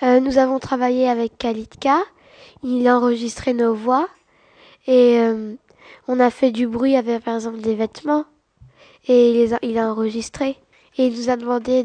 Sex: female